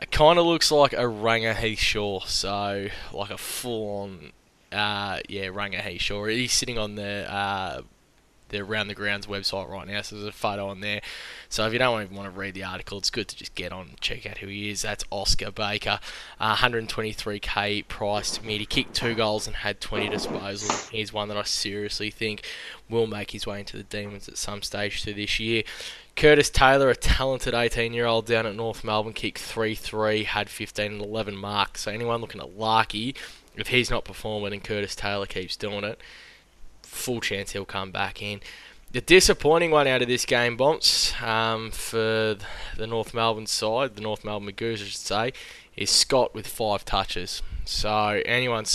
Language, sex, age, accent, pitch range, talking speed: English, male, 10-29, Australian, 100-115 Hz, 190 wpm